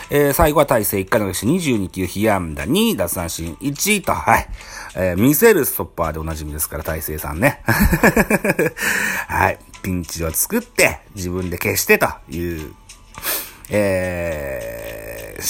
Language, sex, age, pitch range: Japanese, male, 40-59, 90-135 Hz